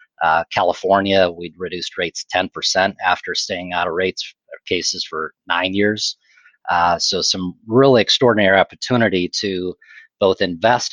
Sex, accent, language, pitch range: male, American, English, 90-105 Hz